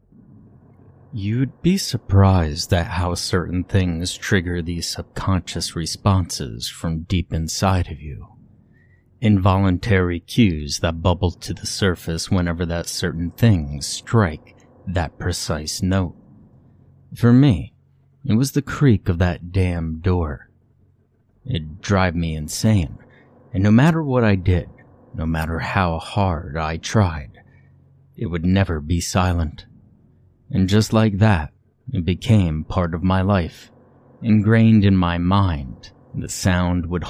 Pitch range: 85-115 Hz